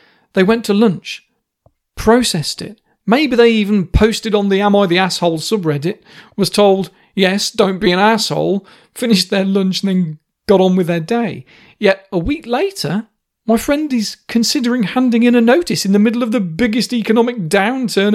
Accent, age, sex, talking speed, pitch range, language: British, 40-59, male, 180 wpm, 175-225 Hz, English